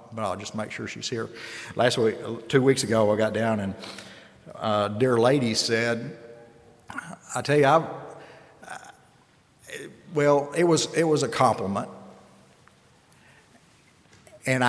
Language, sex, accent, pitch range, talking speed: English, male, American, 115-150 Hz, 135 wpm